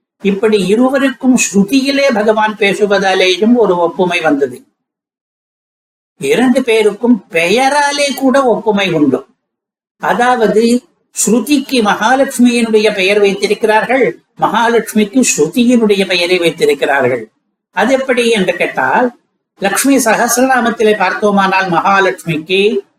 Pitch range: 190-235 Hz